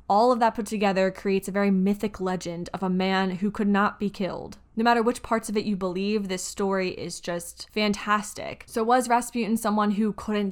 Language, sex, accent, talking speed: English, female, American, 210 wpm